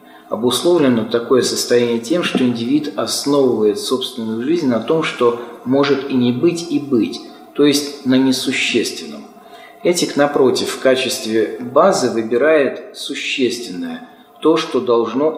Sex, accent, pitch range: male, native, 115-140 Hz